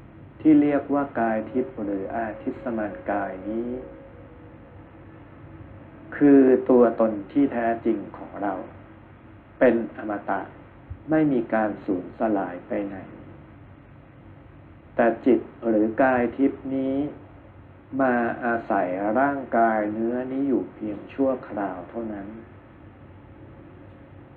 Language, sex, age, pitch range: Thai, male, 60-79, 105-130 Hz